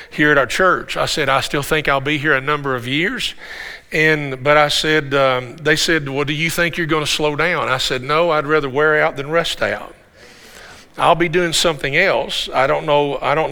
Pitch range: 140-170 Hz